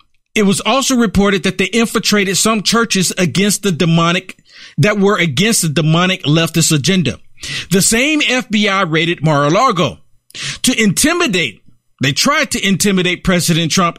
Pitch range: 165-215 Hz